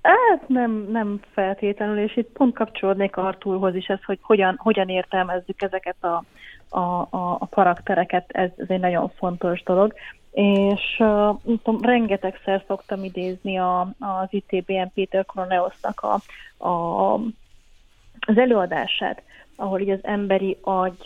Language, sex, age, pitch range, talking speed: Hungarian, female, 30-49, 185-215 Hz, 130 wpm